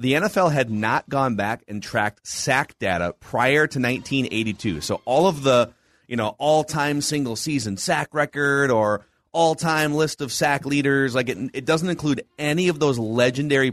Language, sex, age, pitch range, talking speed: English, male, 30-49, 110-145 Hz, 190 wpm